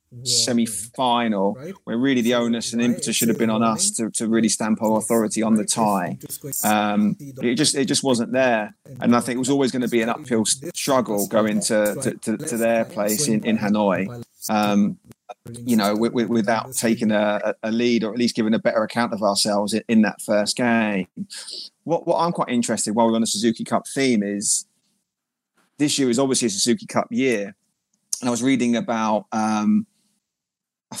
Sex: male